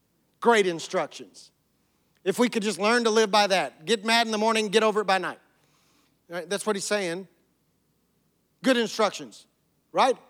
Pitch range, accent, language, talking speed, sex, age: 195-250 Hz, American, English, 175 wpm, male, 40-59